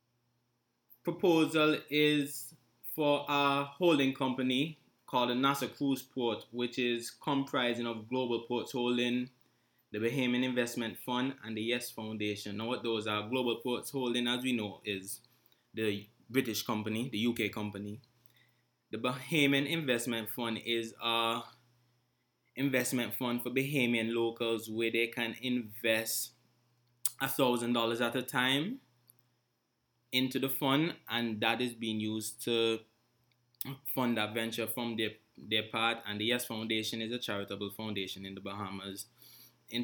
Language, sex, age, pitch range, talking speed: English, male, 20-39, 110-125 Hz, 135 wpm